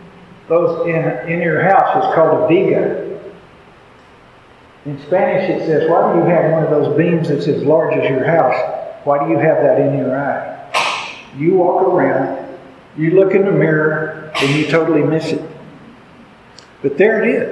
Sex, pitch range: male, 150-190 Hz